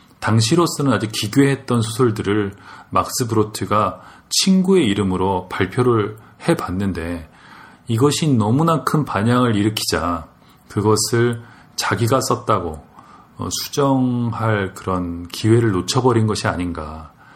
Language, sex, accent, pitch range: Korean, male, native, 95-125 Hz